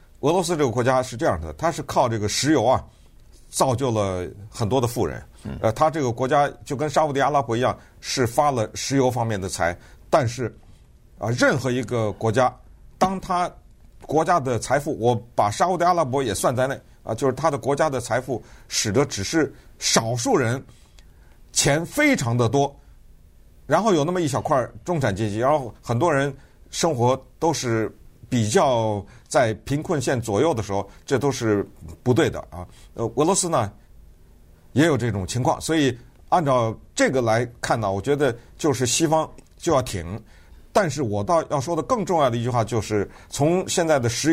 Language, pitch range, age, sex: Chinese, 105-145 Hz, 50-69, male